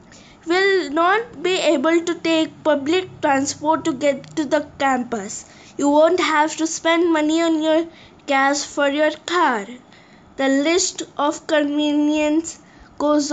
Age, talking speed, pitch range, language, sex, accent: 20-39, 135 wpm, 285-340 Hz, English, female, Indian